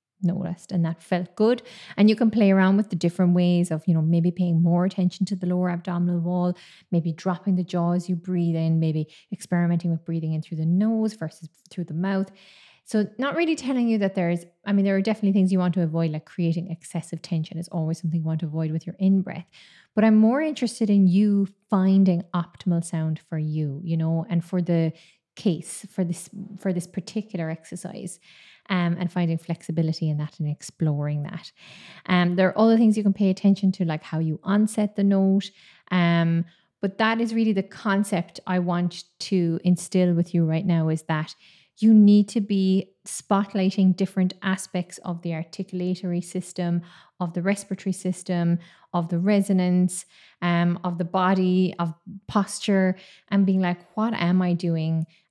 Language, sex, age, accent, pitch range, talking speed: English, female, 20-39, Irish, 170-195 Hz, 190 wpm